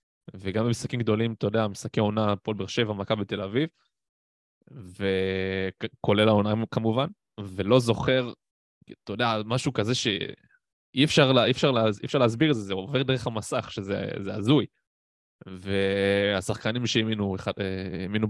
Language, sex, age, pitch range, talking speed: Hebrew, male, 20-39, 100-120 Hz, 125 wpm